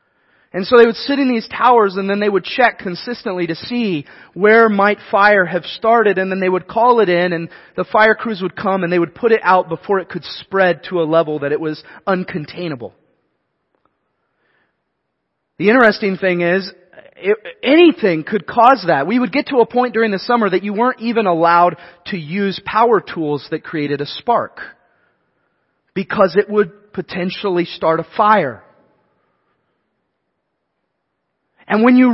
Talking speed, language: 170 wpm, English